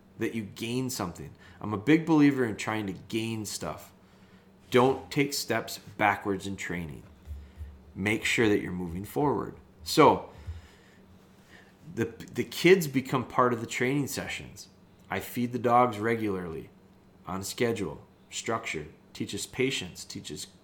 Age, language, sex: 30-49, English, male